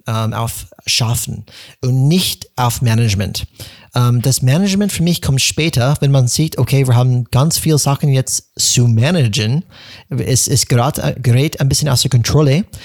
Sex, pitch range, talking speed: male, 120-145 Hz, 155 wpm